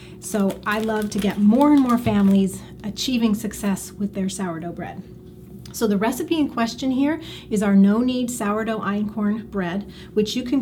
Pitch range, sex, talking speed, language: 195-235 Hz, female, 175 wpm, English